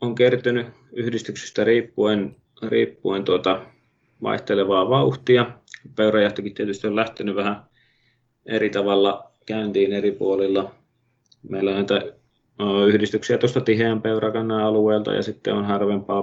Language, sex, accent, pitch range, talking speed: Finnish, male, native, 100-115 Hz, 105 wpm